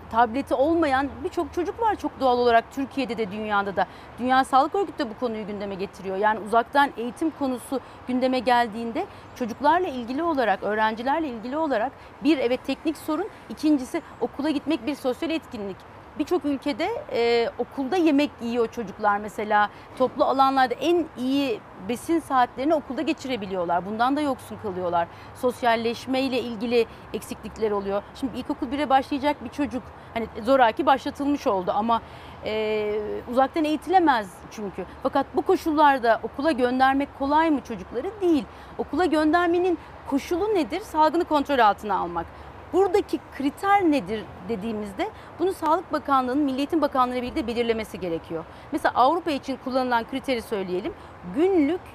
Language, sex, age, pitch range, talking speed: Turkish, female, 40-59, 230-310 Hz, 135 wpm